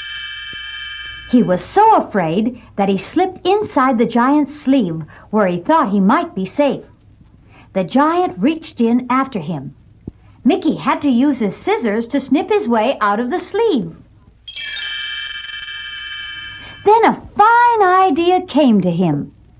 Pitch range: 185-315 Hz